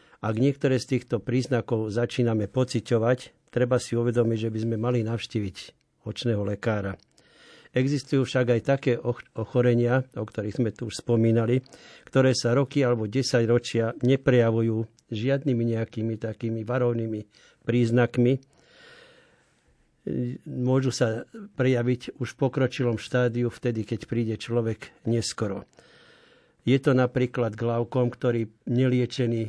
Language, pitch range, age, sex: Slovak, 115-125 Hz, 50-69, male